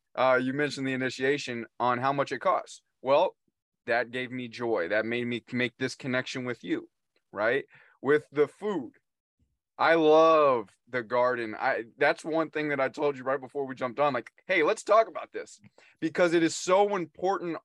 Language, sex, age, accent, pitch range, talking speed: English, male, 20-39, American, 125-160 Hz, 185 wpm